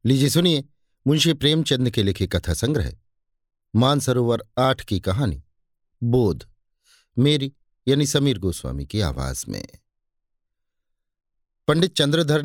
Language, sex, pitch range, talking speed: Hindi, male, 105-140 Hz, 105 wpm